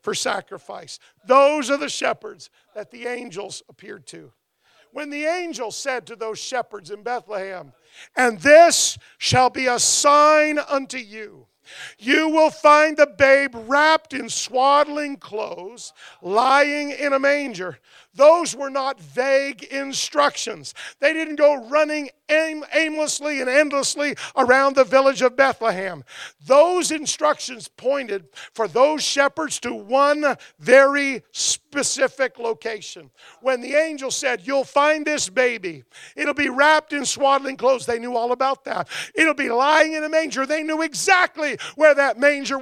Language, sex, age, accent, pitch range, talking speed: English, male, 50-69, American, 240-295 Hz, 140 wpm